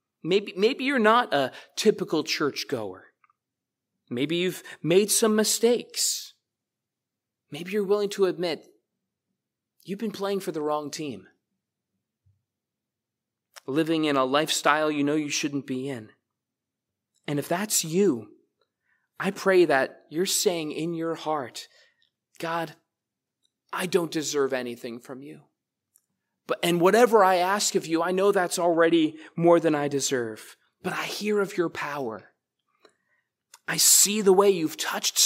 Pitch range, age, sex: 150-200 Hz, 30-49, male